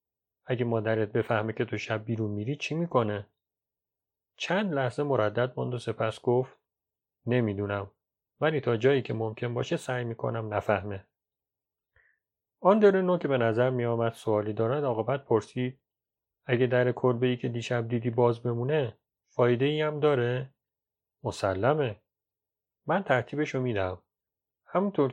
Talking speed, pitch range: 130 wpm, 110-135 Hz